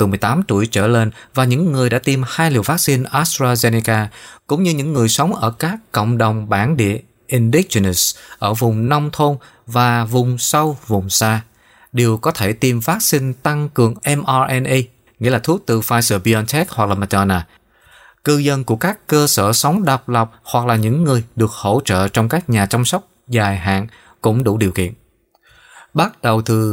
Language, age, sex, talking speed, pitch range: Vietnamese, 20-39, male, 180 wpm, 110-145 Hz